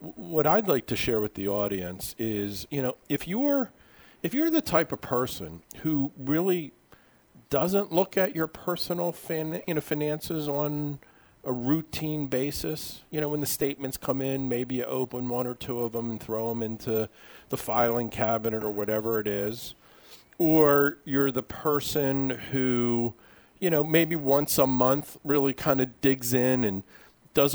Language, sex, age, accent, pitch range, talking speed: English, male, 40-59, American, 110-140 Hz, 170 wpm